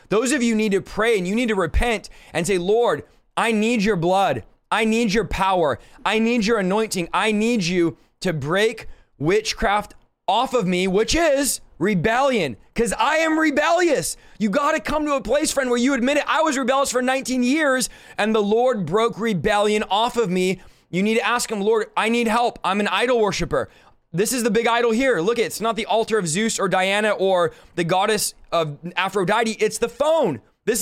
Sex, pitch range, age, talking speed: male, 185-235 Hz, 20-39, 205 wpm